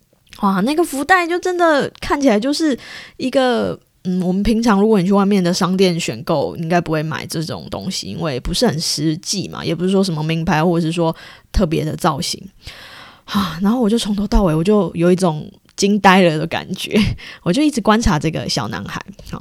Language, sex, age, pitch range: Chinese, female, 20-39, 165-220 Hz